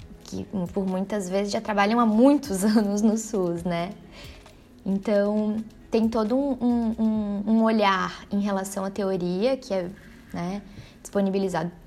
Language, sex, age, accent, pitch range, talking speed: Portuguese, female, 10-29, Brazilian, 180-220 Hz, 135 wpm